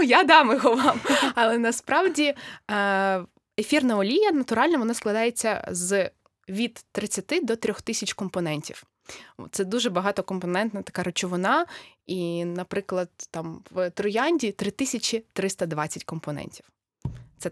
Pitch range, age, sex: 180-225 Hz, 20-39, female